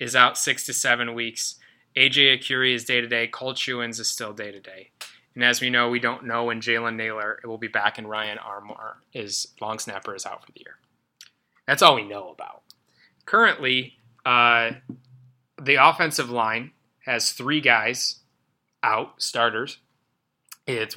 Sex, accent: male, American